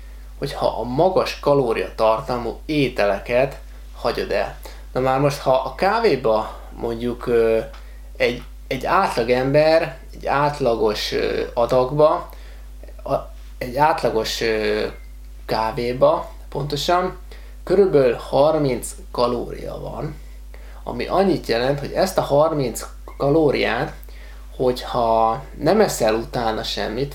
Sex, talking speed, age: male, 95 wpm, 20-39